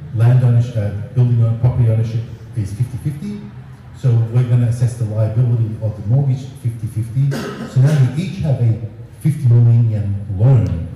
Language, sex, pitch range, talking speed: English, male, 105-125 Hz, 160 wpm